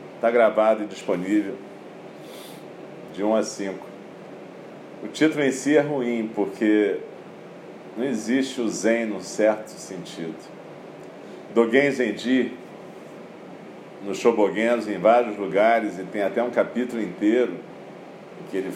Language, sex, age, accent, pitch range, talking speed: Portuguese, male, 40-59, Brazilian, 100-120 Hz, 120 wpm